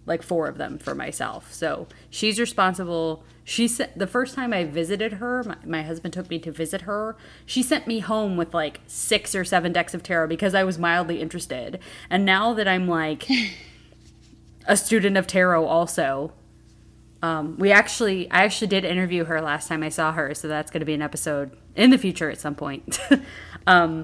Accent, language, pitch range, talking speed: American, English, 160-205 Hz, 195 wpm